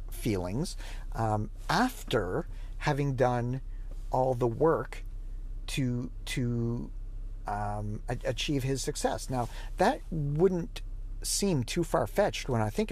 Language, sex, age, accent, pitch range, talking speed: English, male, 50-69, American, 105-135 Hz, 105 wpm